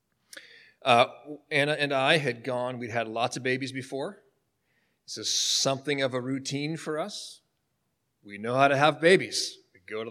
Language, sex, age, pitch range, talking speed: English, male, 40-59, 120-160 Hz, 165 wpm